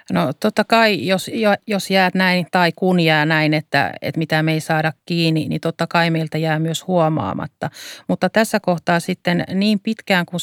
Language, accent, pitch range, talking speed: Finnish, native, 160-185 Hz, 185 wpm